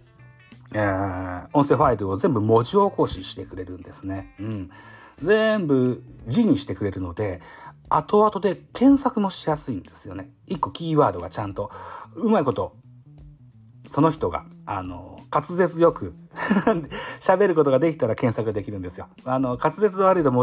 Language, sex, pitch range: Japanese, male, 95-155 Hz